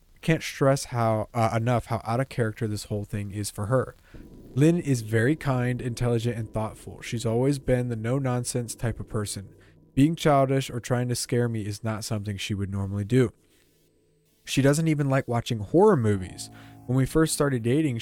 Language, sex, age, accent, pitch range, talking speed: English, male, 20-39, American, 105-135 Hz, 185 wpm